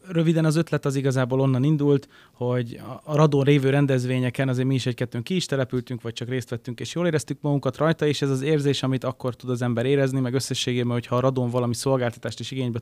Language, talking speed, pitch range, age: Hungarian, 220 wpm, 120-140 Hz, 20-39